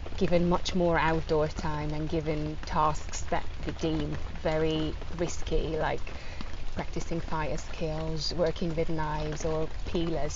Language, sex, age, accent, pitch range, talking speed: English, female, 20-39, British, 155-180 Hz, 125 wpm